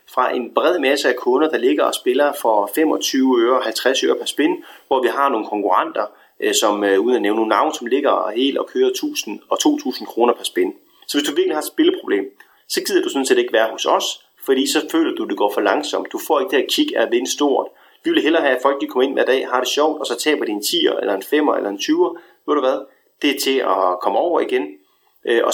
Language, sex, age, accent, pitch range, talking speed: Danish, male, 30-49, native, 300-390 Hz, 265 wpm